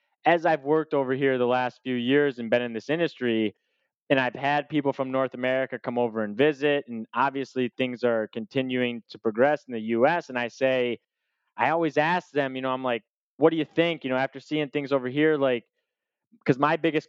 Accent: American